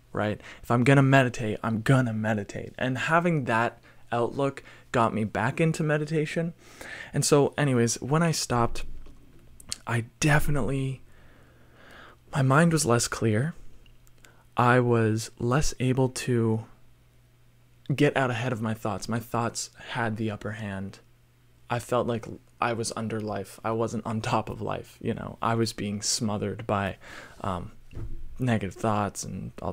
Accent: American